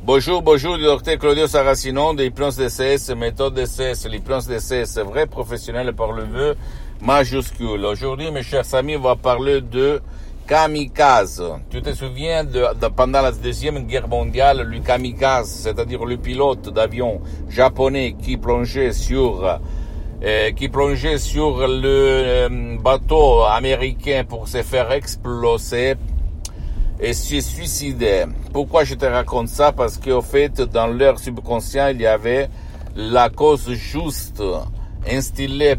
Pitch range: 100-135 Hz